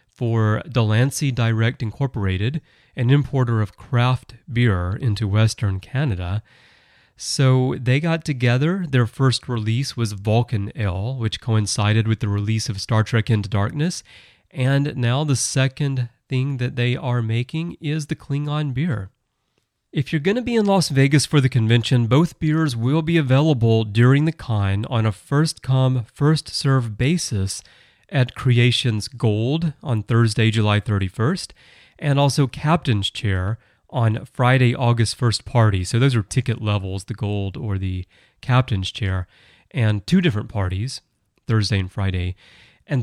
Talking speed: 145 wpm